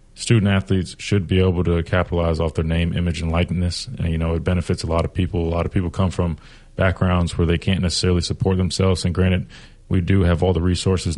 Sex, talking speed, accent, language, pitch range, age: male, 230 wpm, American, English, 85-95 Hz, 20-39